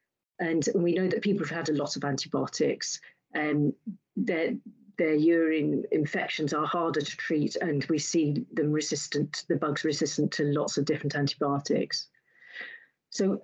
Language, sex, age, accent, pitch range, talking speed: English, female, 40-59, British, 150-190 Hz, 150 wpm